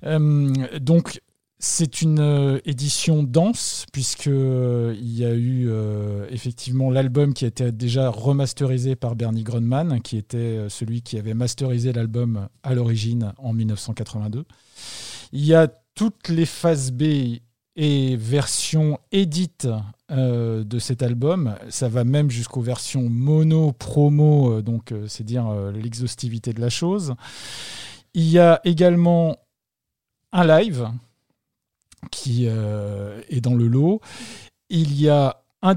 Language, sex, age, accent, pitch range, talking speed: French, male, 50-69, French, 115-145 Hz, 135 wpm